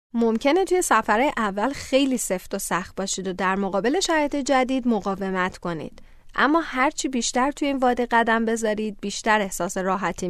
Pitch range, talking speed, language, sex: 205-275 Hz, 155 wpm, Persian, female